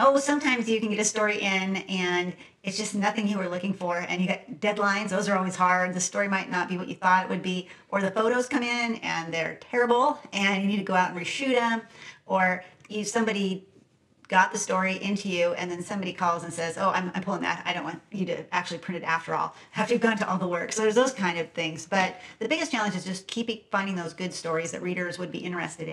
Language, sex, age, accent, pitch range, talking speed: English, female, 40-59, American, 175-210 Hz, 250 wpm